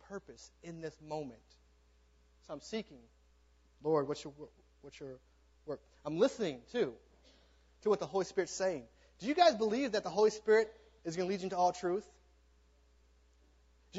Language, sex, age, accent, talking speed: English, male, 30-49, American, 165 wpm